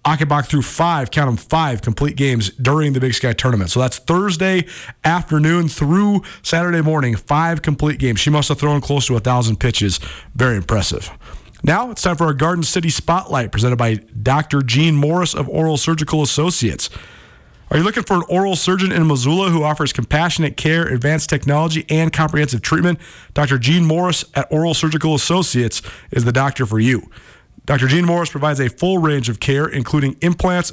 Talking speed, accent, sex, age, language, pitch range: 180 wpm, American, male, 40-59, English, 125-160 Hz